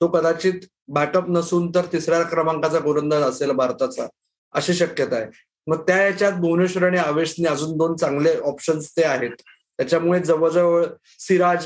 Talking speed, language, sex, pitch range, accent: 145 wpm, Marathi, male, 155-200 Hz, native